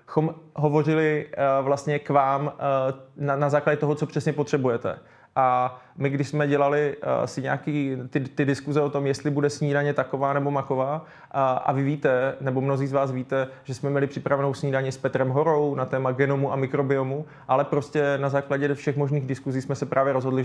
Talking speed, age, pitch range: 175 wpm, 20-39, 130-145 Hz